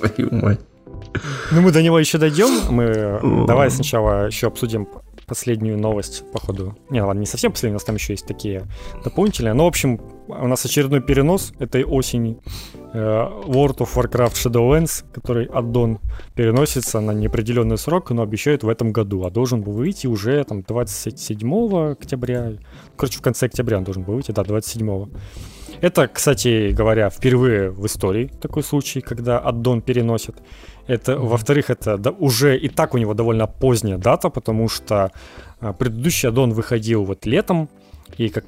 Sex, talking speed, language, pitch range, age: male, 150 wpm, Ukrainian, 105-130 Hz, 20-39